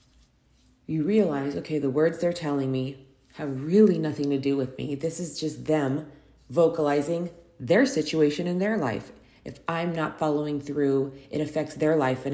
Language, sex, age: English, female, 30-49